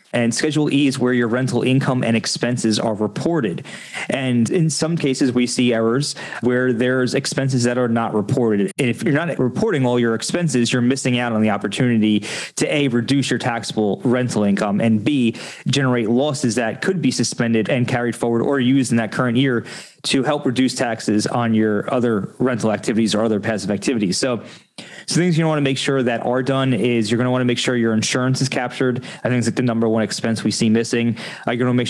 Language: English